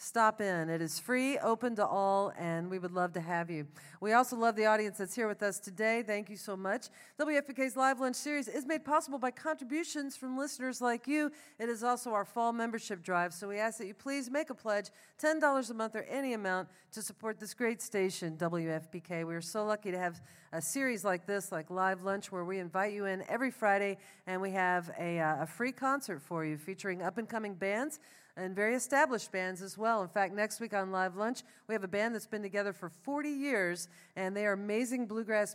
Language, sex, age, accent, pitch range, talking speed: English, female, 40-59, American, 185-240 Hz, 220 wpm